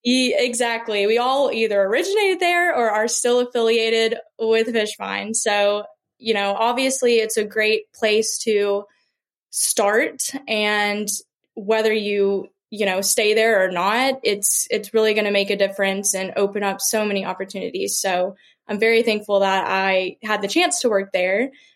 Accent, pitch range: American, 205-240 Hz